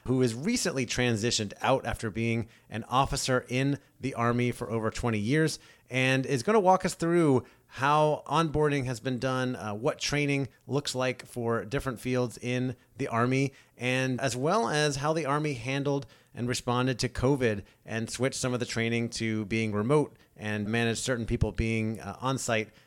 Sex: male